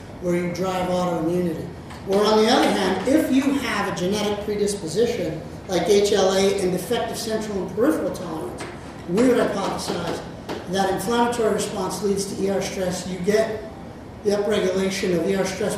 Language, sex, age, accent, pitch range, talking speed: English, male, 40-59, American, 175-220 Hz, 150 wpm